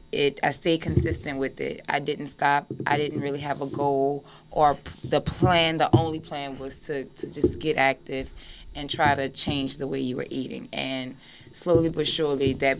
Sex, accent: female, American